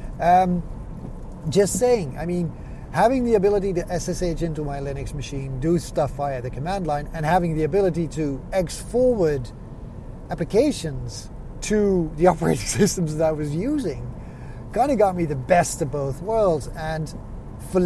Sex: male